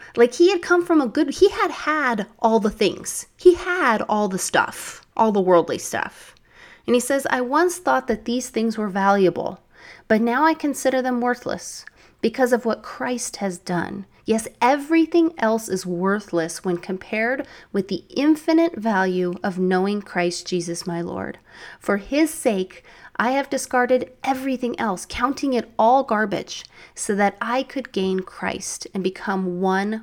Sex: female